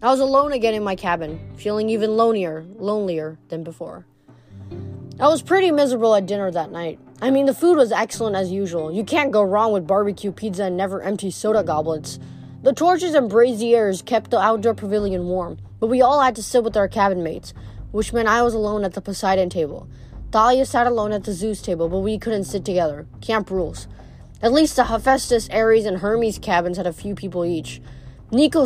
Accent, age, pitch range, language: American, 20-39, 185-230 Hz, English